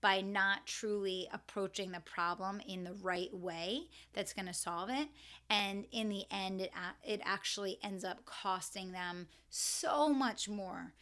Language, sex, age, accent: English, female, 30-49, American